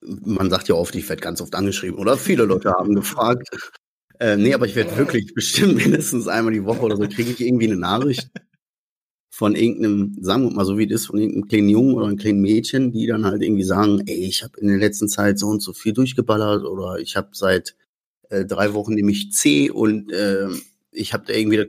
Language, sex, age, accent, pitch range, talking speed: German, male, 30-49, German, 105-130 Hz, 225 wpm